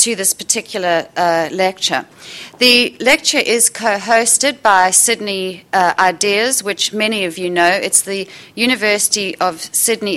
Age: 40-59